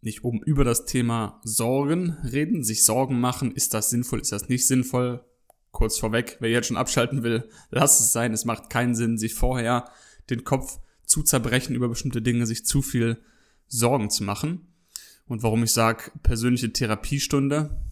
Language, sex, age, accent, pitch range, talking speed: German, male, 20-39, German, 115-135 Hz, 175 wpm